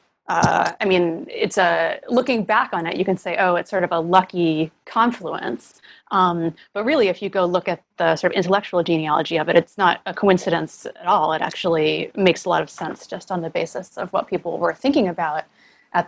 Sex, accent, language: female, American, English